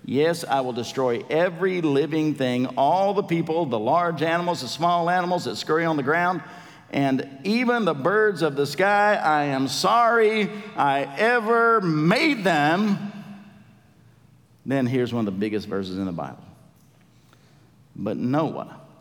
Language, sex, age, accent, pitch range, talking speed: English, male, 50-69, American, 130-175 Hz, 150 wpm